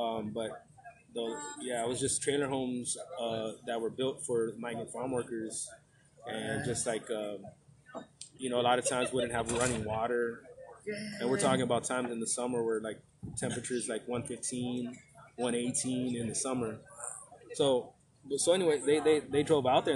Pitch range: 115-145 Hz